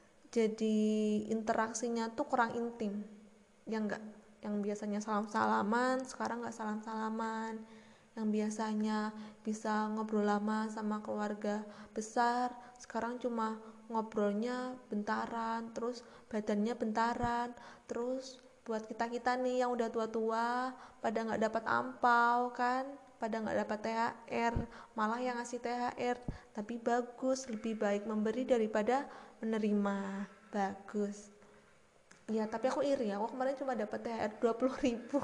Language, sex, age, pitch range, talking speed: Indonesian, female, 20-39, 215-245 Hz, 120 wpm